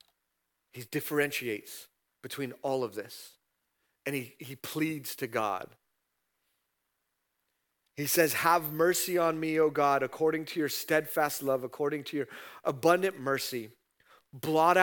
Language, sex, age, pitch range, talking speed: English, male, 40-59, 105-145 Hz, 125 wpm